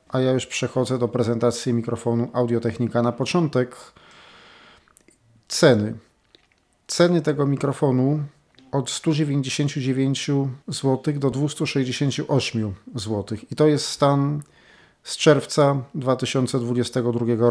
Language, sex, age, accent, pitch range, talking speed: Polish, male, 40-59, native, 125-150 Hz, 95 wpm